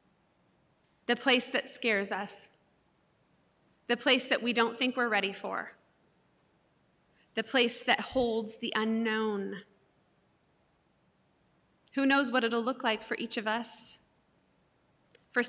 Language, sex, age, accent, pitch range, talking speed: English, female, 30-49, American, 220-260 Hz, 120 wpm